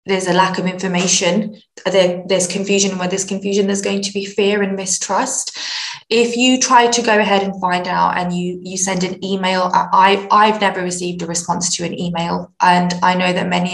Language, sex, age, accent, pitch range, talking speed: English, female, 20-39, British, 180-205 Hz, 200 wpm